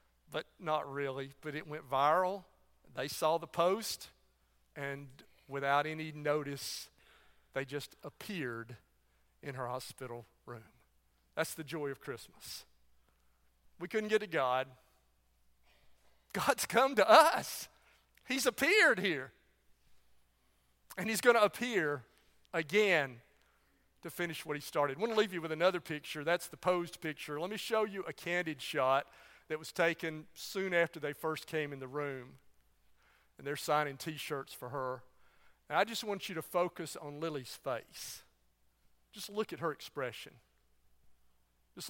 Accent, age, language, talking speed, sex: American, 40-59, English, 145 wpm, male